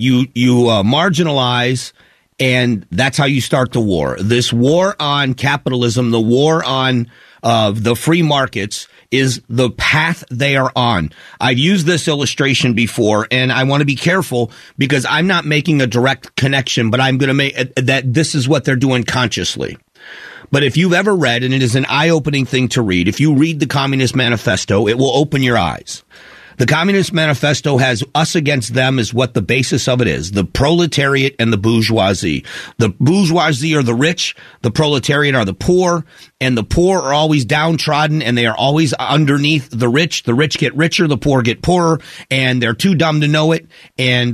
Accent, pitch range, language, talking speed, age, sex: American, 120-155 Hz, English, 190 wpm, 40-59, male